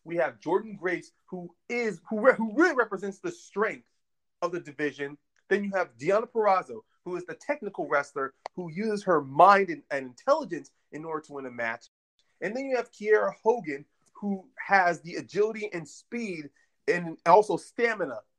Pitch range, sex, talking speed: 155-210 Hz, male, 175 wpm